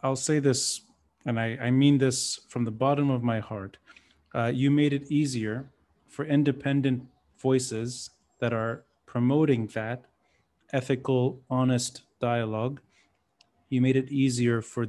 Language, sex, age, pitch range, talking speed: English, male, 30-49, 115-130 Hz, 135 wpm